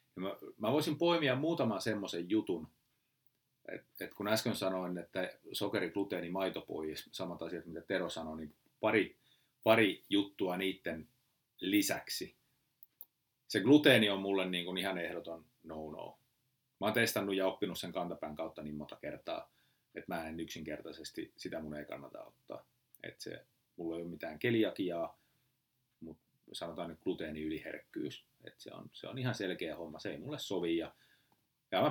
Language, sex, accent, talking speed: Finnish, male, native, 145 wpm